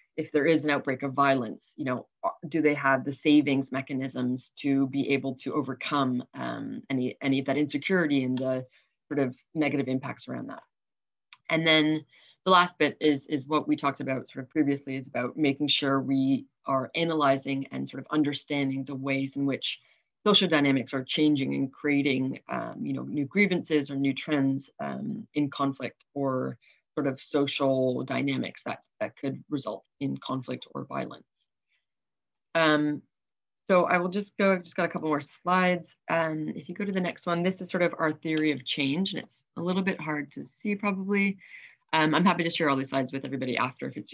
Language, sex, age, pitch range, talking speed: English, female, 20-39, 135-160 Hz, 195 wpm